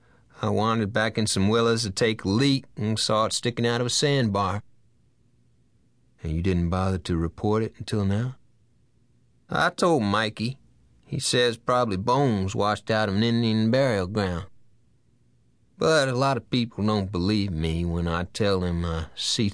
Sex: male